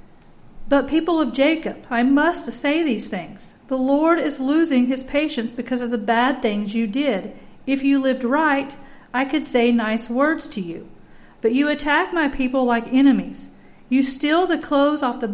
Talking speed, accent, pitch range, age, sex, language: 180 wpm, American, 240-290 Hz, 50-69, female, English